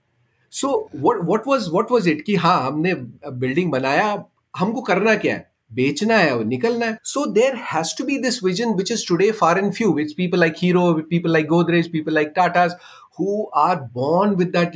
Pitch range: 150-210 Hz